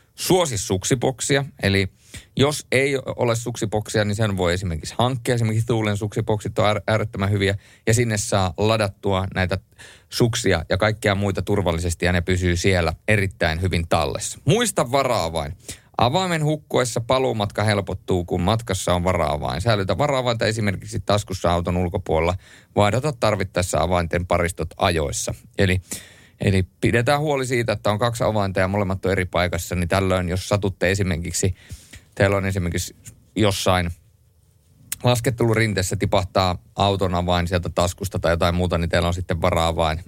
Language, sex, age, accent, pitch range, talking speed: Finnish, male, 30-49, native, 90-115 Hz, 145 wpm